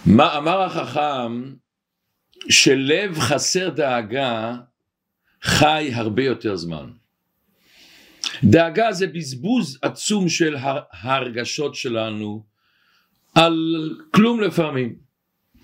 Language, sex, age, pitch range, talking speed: Hebrew, male, 50-69, 135-190 Hz, 80 wpm